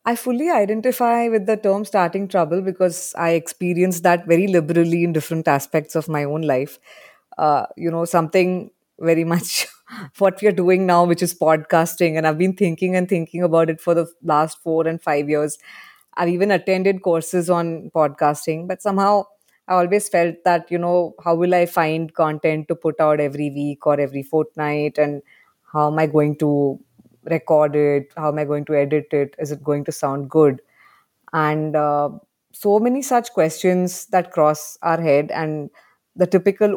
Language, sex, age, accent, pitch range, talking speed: English, female, 20-39, Indian, 155-185 Hz, 180 wpm